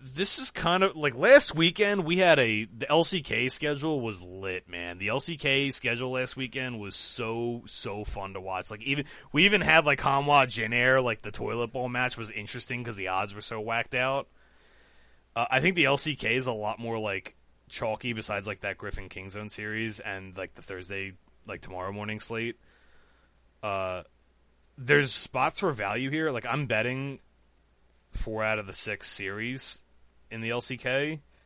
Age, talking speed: 20-39, 175 wpm